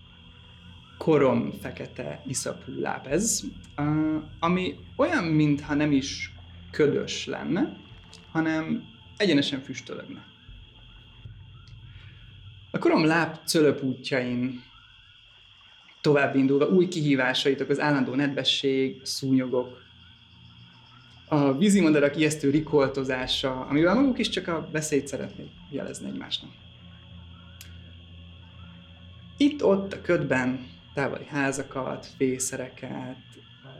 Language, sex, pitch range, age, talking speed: Hungarian, male, 90-140 Hz, 30-49, 85 wpm